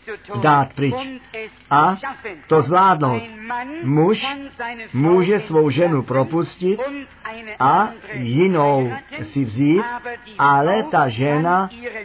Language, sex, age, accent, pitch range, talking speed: Czech, male, 50-69, native, 145-210 Hz, 85 wpm